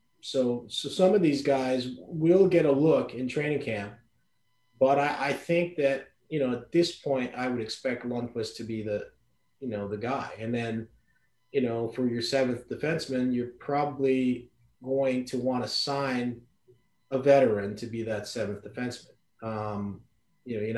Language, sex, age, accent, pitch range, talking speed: English, male, 30-49, American, 110-135 Hz, 175 wpm